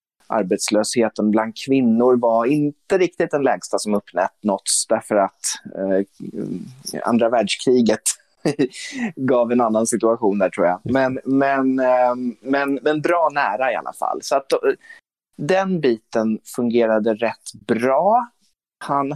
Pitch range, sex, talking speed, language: 115-145 Hz, male, 130 wpm, Swedish